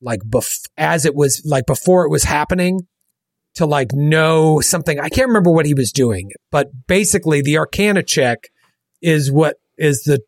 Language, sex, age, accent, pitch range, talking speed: English, male, 30-49, American, 110-155 Hz, 175 wpm